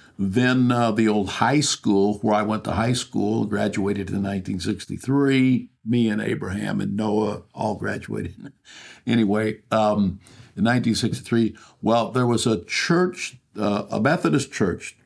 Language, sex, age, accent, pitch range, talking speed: English, male, 60-79, American, 105-120 Hz, 140 wpm